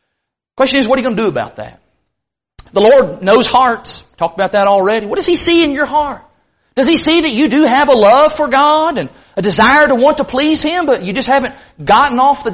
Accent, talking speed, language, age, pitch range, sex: American, 245 wpm, English, 40-59, 195-275 Hz, male